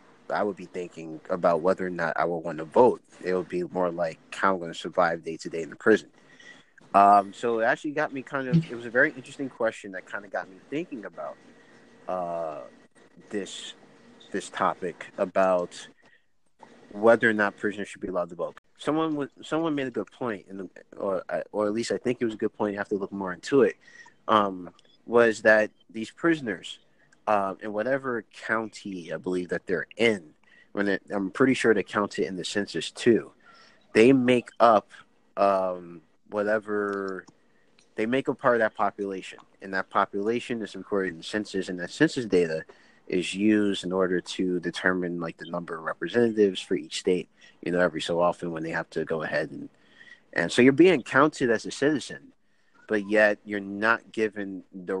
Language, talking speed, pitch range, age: English, 200 wpm, 90-120 Hz, 30-49